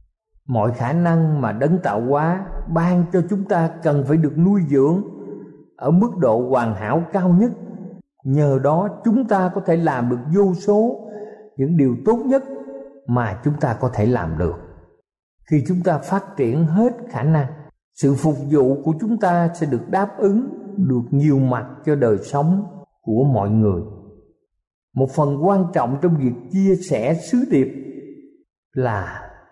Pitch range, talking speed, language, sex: 125-185 Hz, 165 wpm, Vietnamese, male